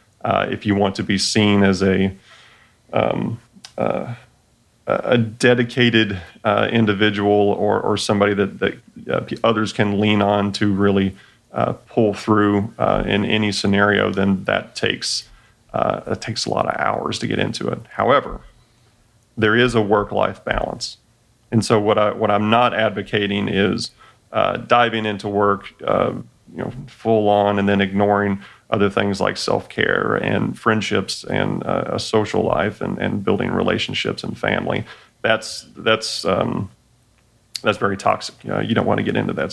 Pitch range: 100-115 Hz